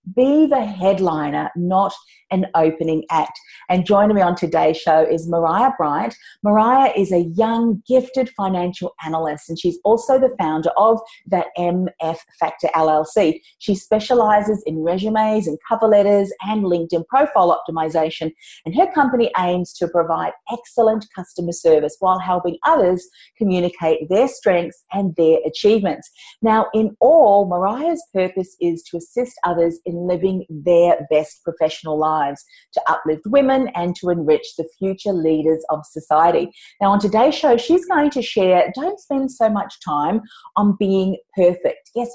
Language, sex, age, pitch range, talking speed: English, female, 40-59, 165-220 Hz, 150 wpm